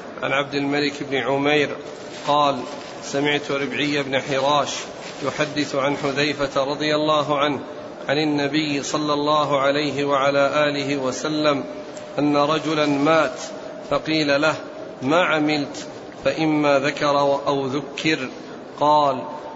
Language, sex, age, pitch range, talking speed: Arabic, male, 40-59, 140-150 Hz, 110 wpm